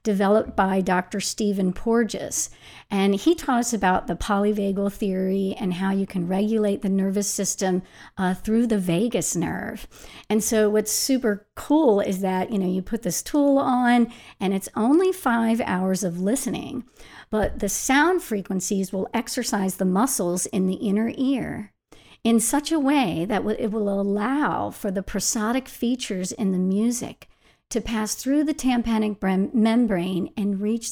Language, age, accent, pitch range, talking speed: English, 50-69, American, 190-235 Hz, 160 wpm